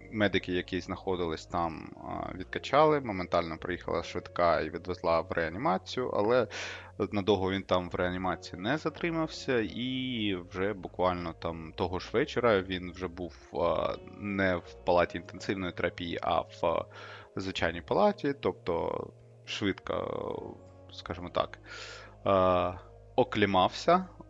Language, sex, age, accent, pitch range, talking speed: Ukrainian, male, 20-39, native, 90-110 Hz, 110 wpm